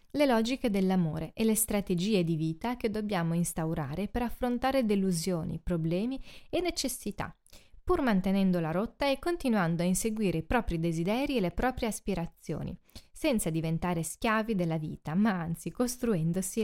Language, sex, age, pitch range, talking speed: Italian, female, 20-39, 175-235 Hz, 145 wpm